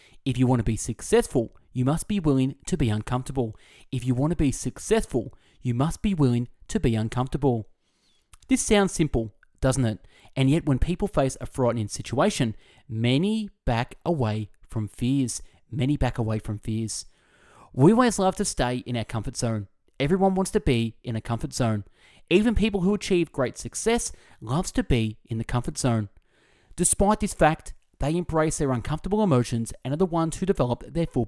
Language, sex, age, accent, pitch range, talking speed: English, male, 30-49, Australian, 115-175 Hz, 180 wpm